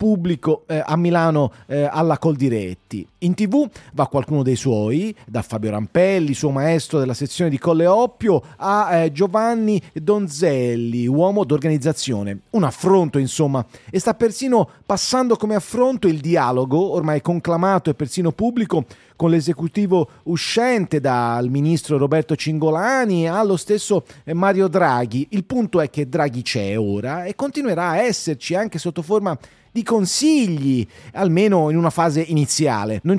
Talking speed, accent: 140 wpm, native